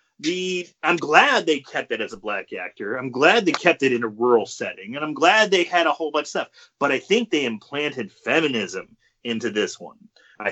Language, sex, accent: English, male, American